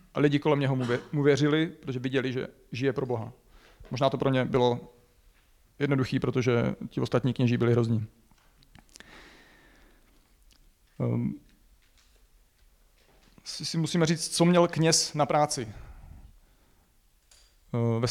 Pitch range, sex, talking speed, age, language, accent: 125-155 Hz, male, 115 wpm, 40-59, Czech, native